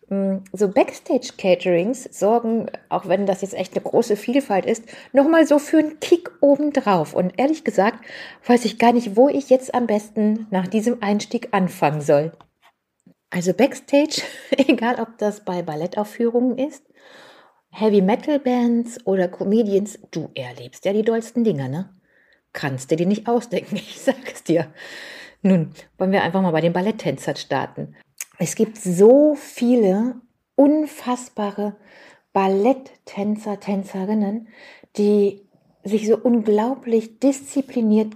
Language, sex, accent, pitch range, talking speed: German, female, German, 190-245 Hz, 130 wpm